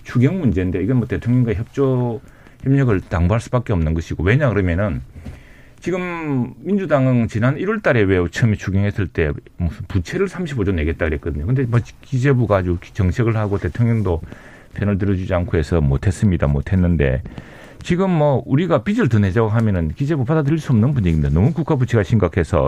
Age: 40-59